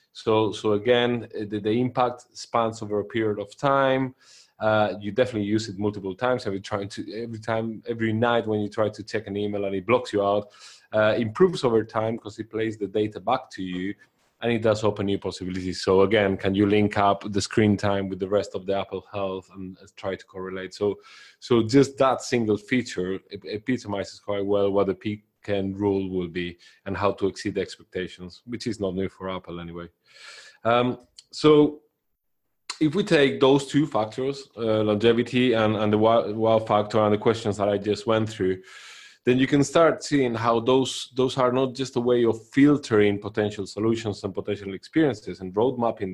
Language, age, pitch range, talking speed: English, 20-39, 100-120 Hz, 200 wpm